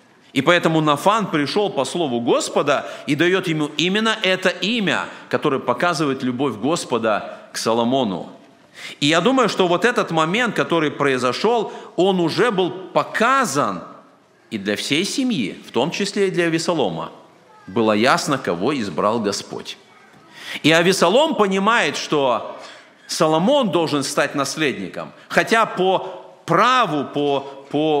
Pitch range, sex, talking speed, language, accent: 150-210 Hz, male, 130 wpm, Russian, native